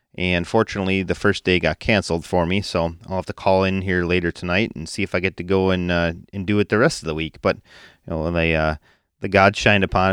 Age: 30-49